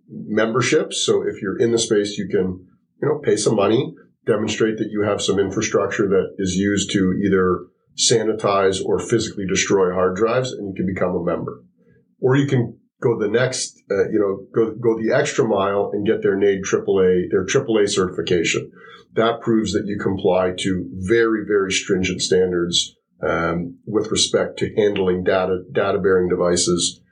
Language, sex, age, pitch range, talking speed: English, male, 40-59, 95-115 Hz, 175 wpm